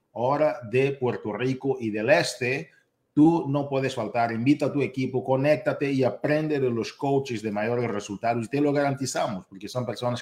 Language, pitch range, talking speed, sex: Spanish, 115-140 Hz, 180 wpm, male